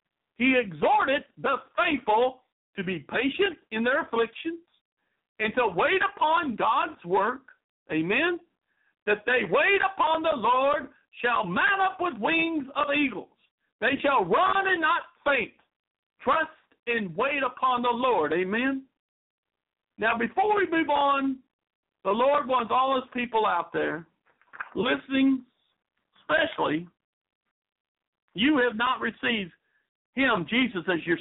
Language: English